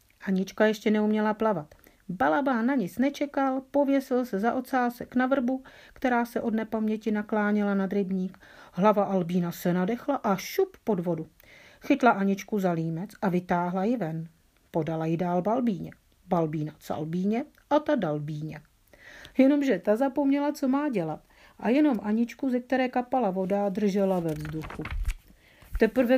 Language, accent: Czech, native